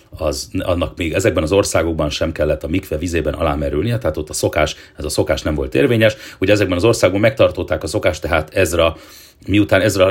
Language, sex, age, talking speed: Hungarian, male, 40-59, 200 wpm